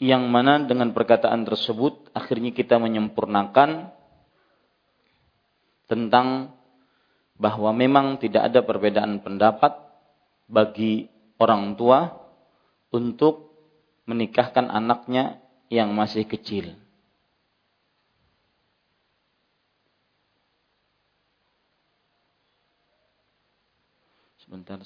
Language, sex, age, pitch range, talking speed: Malay, male, 40-59, 110-140 Hz, 60 wpm